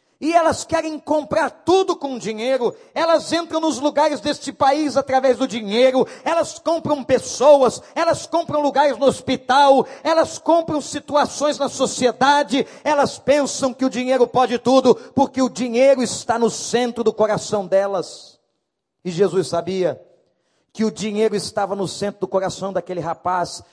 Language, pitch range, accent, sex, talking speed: Portuguese, 205-280 Hz, Brazilian, male, 145 wpm